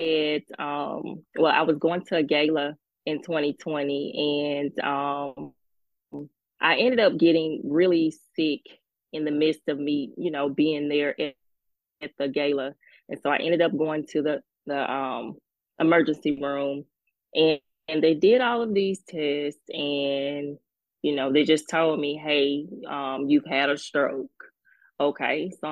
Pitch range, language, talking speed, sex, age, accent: 145-170 Hz, English, 155 wpm, female, 20-39, American